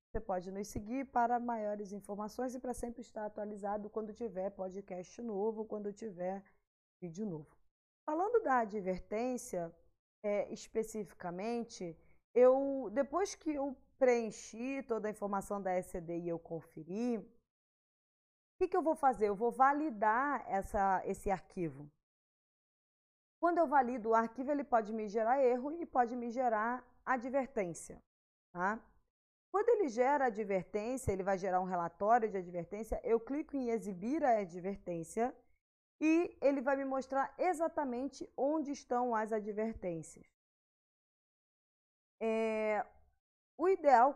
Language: Portuguese